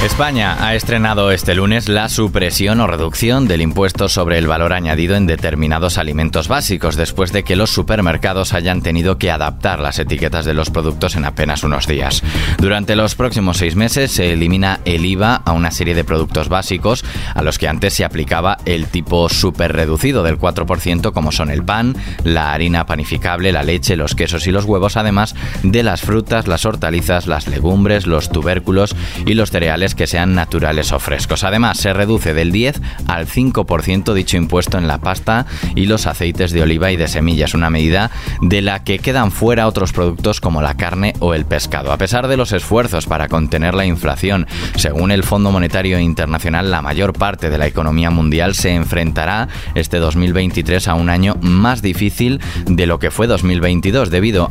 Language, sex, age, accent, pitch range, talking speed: Spanish, male, 20-39, Spanish, 80-100 Hz, 185 wpm